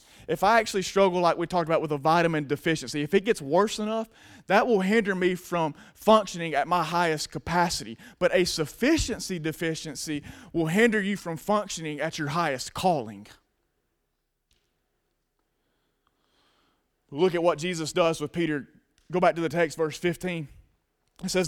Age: 20-39